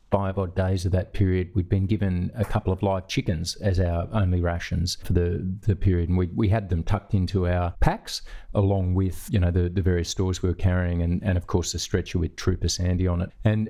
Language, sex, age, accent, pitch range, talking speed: English, male, 40-59, Australian, 90-105 Hz, 235 wpm